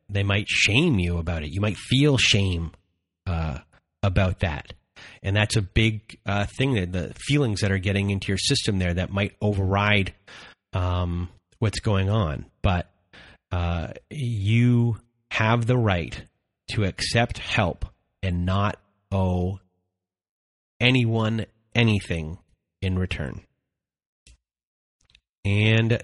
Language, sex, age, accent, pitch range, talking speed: English, male, 30-49, American, 90-115 Hz, 120 wpm